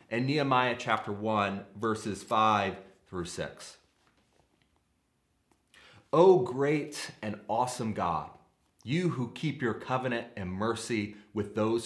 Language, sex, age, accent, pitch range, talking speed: English, male, 30-49, American, 105-140 Hz, 110 wpm